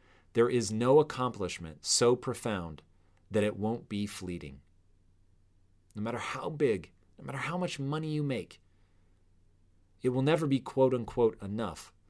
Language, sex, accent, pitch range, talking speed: English, male, American, 95-125 Hz, 145 wpm